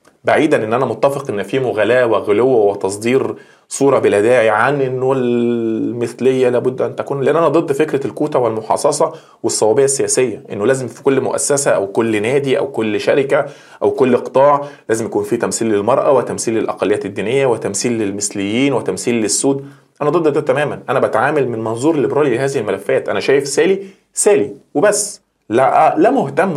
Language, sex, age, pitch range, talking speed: Arabic, male, 20-39, 120-185 Hz, 160 wpm